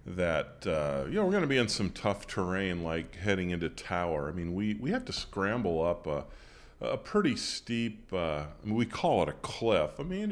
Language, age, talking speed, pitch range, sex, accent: English, 40-59, 220 wpm, 85-110 Hz, male, American